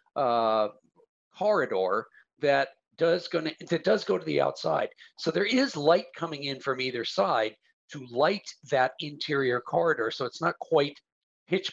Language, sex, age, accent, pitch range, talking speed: English, male, 50-69, American, 130-185 Hz, 160 wpm